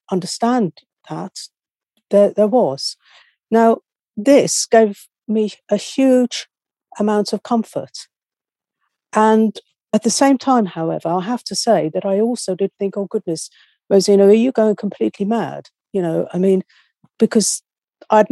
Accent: British